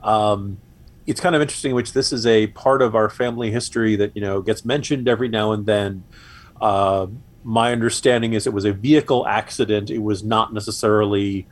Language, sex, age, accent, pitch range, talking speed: English, male, 40-59, American, 100-115 Hz, 190 wpm